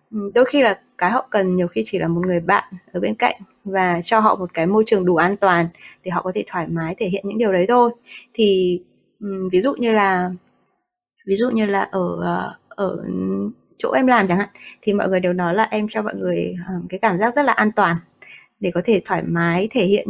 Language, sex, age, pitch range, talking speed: Vietnamese, female, 20-39, 185-235 Hz, 235 wpm